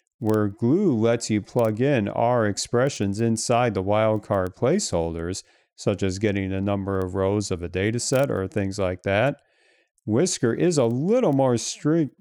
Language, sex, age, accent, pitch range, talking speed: English, male, 40-59, American, 100-120 Hz, 160 wpm